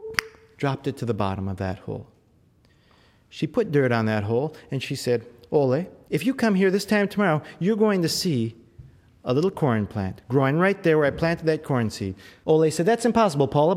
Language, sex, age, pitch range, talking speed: English, male, 30-49, 115-175 Hz, 205 wpm